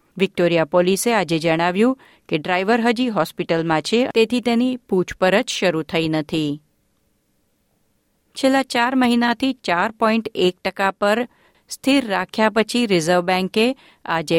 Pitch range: 175-230 Hz